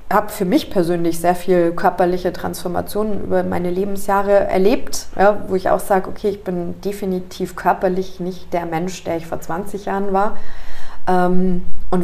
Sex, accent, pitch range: female, German, 170-195 Hz